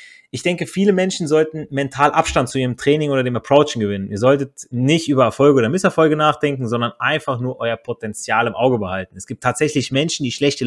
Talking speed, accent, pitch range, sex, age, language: 200 wpm, German, 120-165 Hz, male, 30-49, German